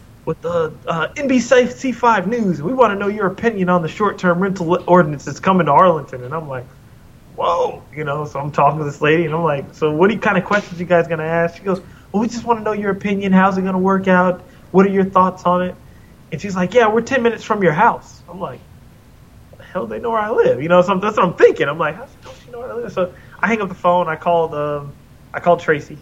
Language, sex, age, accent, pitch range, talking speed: English, male, 20-39, American, 140-190 Hz, 280 wpm